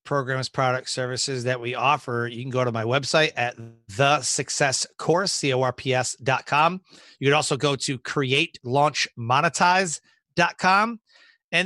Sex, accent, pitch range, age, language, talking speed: male, American, 135-175 Hz, 30-49, English, 125 wpm